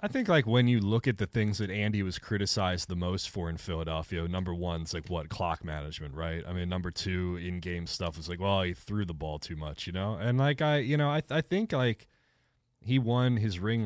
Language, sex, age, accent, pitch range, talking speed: English, male, 30-49, American, 90-115 Hz, 245 wpm